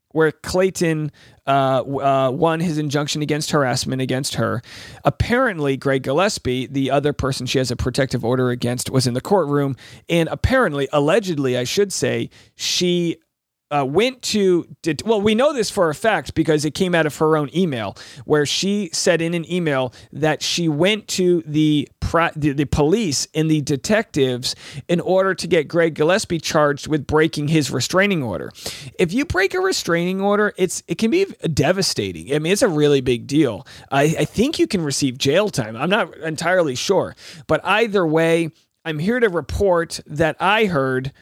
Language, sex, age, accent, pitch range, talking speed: English, male, 40-59, American, 140-185 Hz, 180 wpm